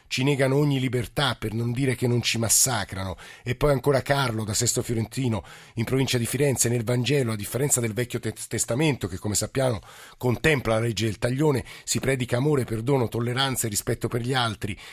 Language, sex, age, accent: Italian, male, 50-69, native